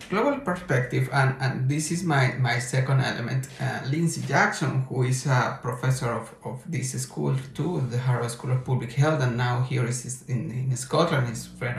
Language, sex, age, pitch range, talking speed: Ukrainian, male, 50-69, 130-160 Hz, 190 wpm